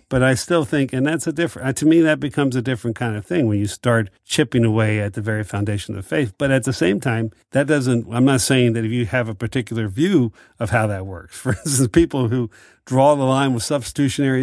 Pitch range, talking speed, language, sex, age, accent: 105-130 Hz, 245 wpm, English, male, 50-69, American